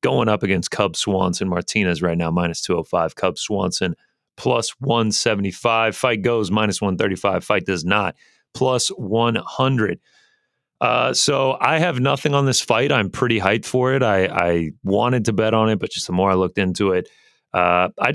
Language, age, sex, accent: English, 30-49, male, American